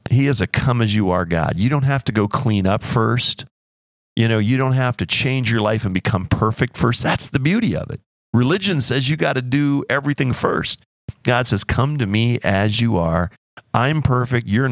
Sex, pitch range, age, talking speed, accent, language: male, 100-130 Hz, 50-69, 205 wpm, American, English